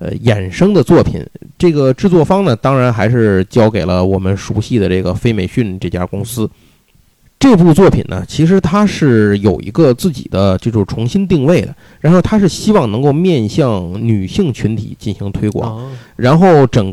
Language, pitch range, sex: Chinese, 105-150 Hz, male